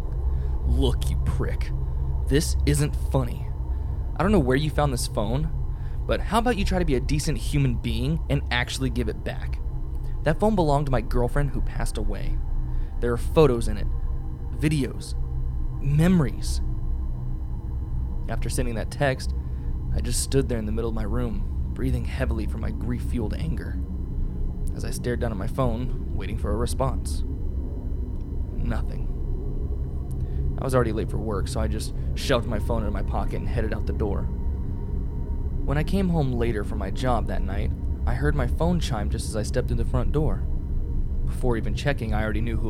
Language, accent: English, American